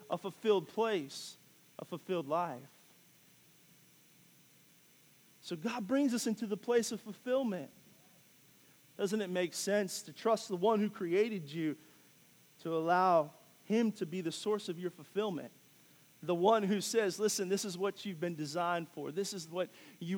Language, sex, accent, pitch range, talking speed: English, male, American, 155-195 Hz, 155 wpm